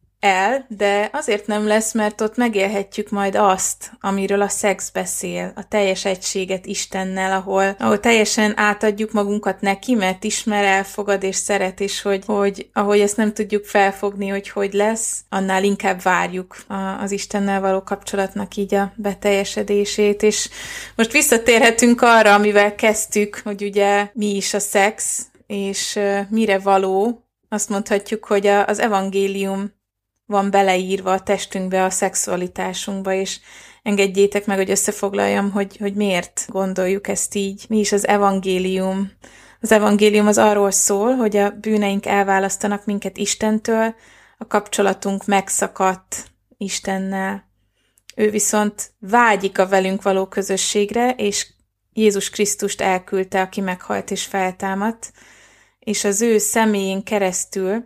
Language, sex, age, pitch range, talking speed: Hungarian, female, 20-39, 195-210 Hz, 135 wpm